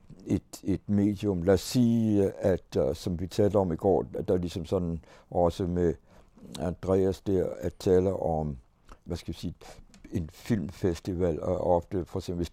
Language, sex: Danish, male